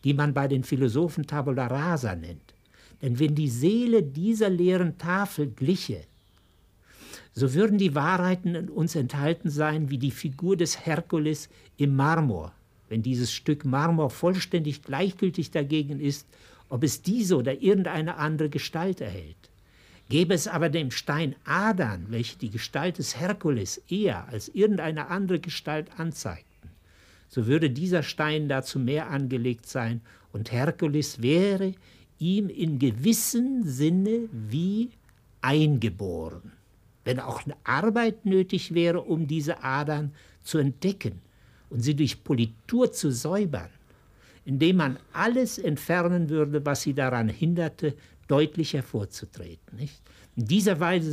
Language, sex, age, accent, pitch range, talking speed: German, male, 60-79, German, 120-170 Hz, 130 wpm